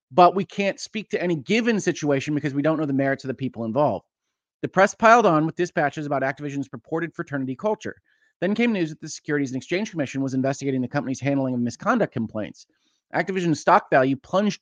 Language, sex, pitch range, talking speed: English, male, 130-170 Hz, 205 wpm